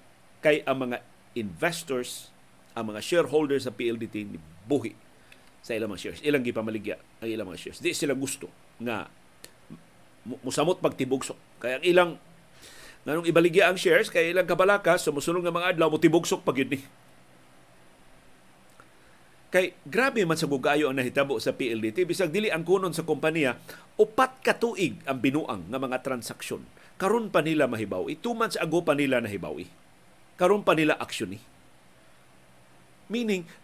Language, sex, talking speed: Filipino, male, 140 wpm